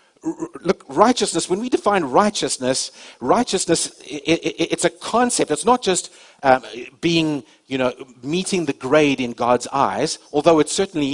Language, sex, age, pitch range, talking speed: English, male, 50-69, 140-185 Hz, 150 wpm